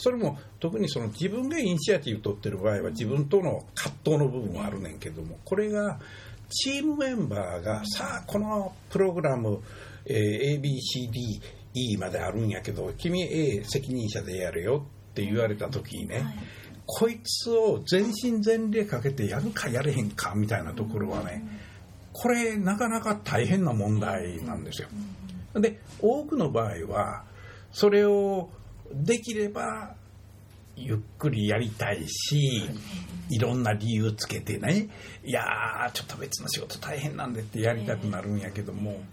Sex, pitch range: male, 105-160 Hz